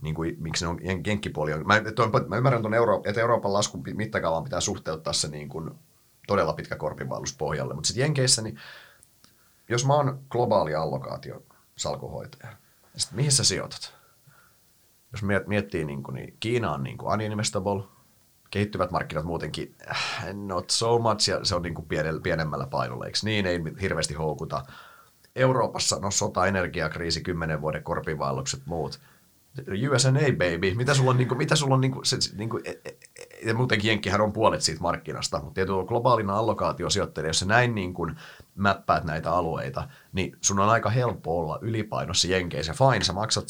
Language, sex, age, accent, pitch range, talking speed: Finnish, male, 30-49, native, 80-115 Hz, 150 wpm